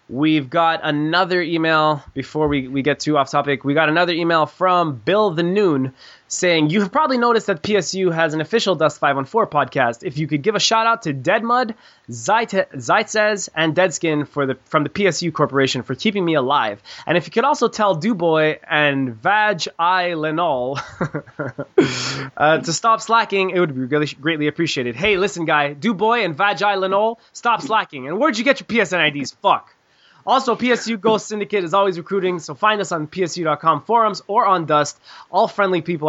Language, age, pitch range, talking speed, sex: English, 20-39, 145-190 Hz, 175 wpm, male